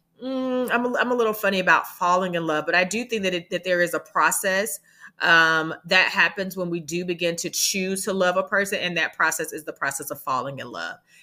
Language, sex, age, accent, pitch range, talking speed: English, female, 30-49, American, 165-195 Hz, 240 wpm